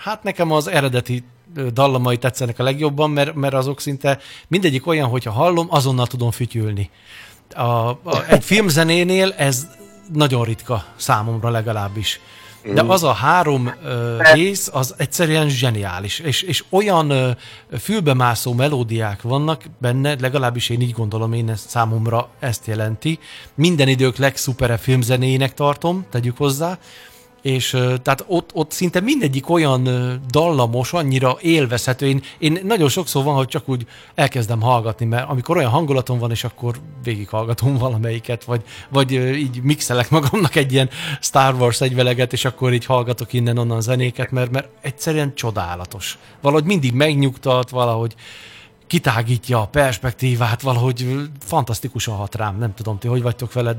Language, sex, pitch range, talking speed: Hungarian, male, 120-145 Hz, 140 wpm